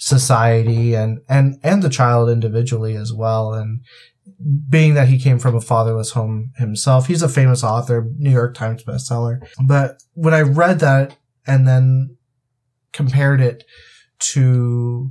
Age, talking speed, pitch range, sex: 20-39, 145 wpm, 120-140 Hz, male